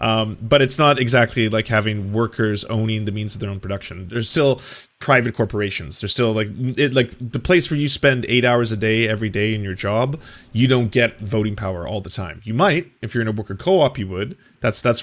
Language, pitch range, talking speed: English, 105-130 Hz, 230 wpm